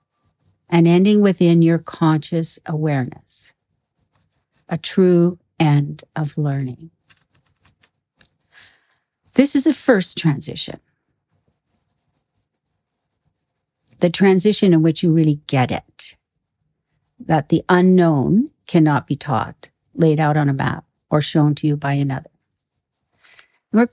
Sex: female